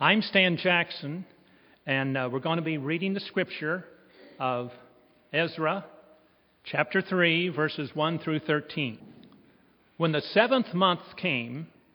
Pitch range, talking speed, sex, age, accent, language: 145-195 Hz, 125 wpm, male, 60-79, American, English